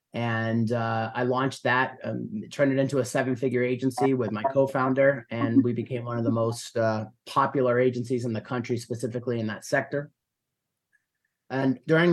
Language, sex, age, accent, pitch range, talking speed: English, male, 30-49, American, 115-140 Hz, 170 wpm